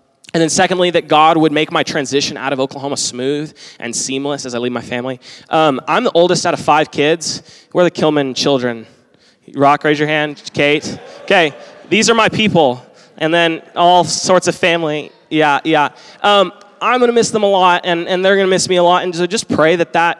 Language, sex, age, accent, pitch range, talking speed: English, male, 20-39, American, 145-190 Hz, 230 wpm